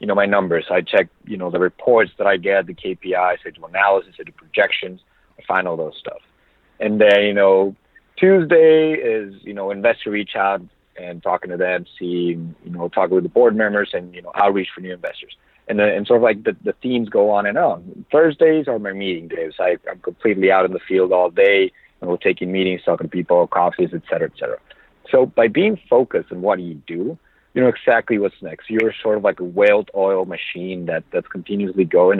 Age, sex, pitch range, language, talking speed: 40-59, male, 95-115 Hz, English, 230 wpm